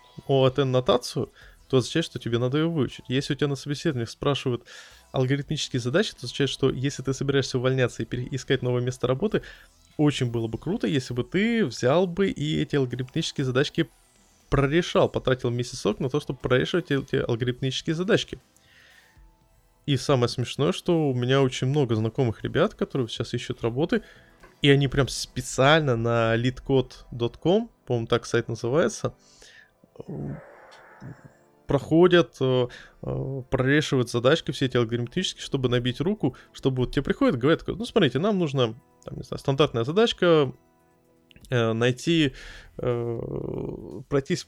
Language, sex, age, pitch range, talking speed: Russian, male, 20-39, 125-155 Hz, 140 wpm